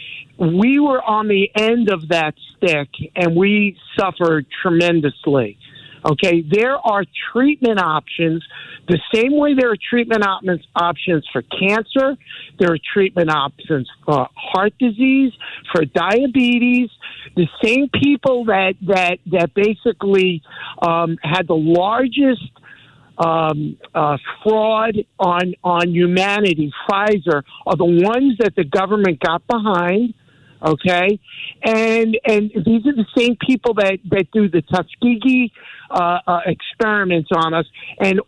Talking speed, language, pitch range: 125 wpm, English, 165-215 Hz